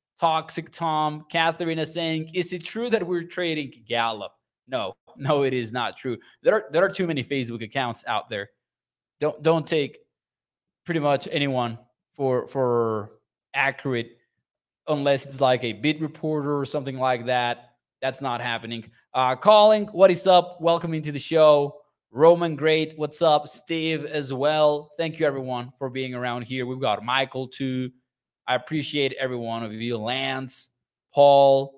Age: 20-39